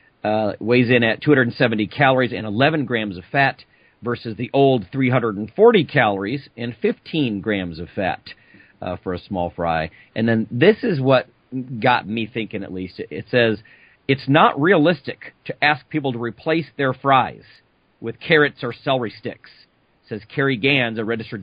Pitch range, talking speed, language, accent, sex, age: 115-150 Hz, 160 wpm, English, American, male, 40-59